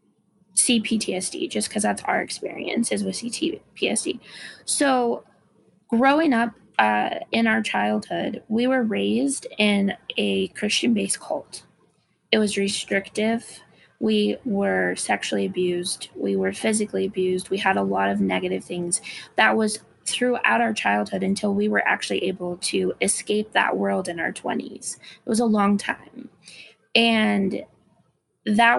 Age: 20-39